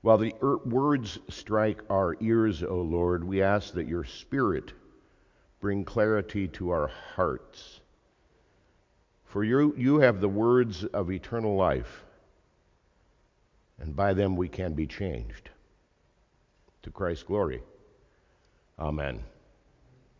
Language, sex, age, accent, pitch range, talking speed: English, male, 50-69, American, 95-130 Hz, 115 wpm